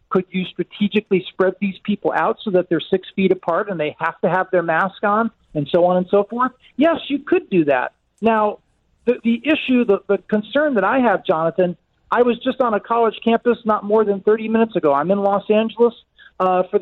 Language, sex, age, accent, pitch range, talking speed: English, male, 40-59, American, 180-230 Hz, 220 wpm